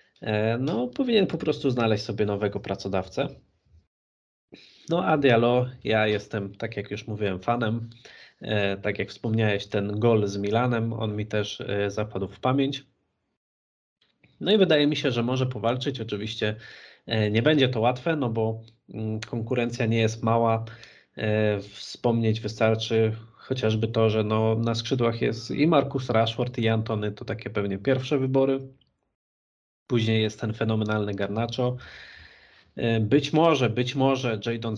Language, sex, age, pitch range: Polish, male, 20-39, 105-130 Hz